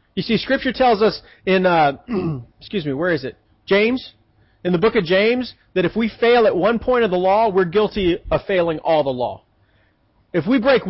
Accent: American